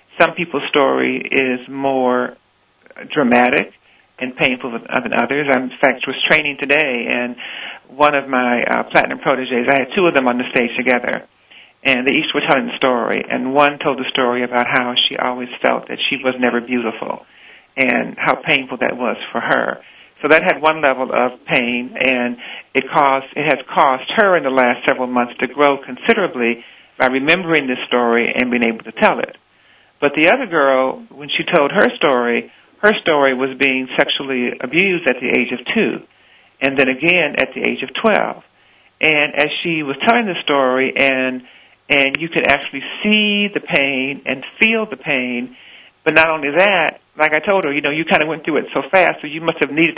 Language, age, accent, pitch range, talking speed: English, 50-69, American, 125-155 Hz, 195 wpm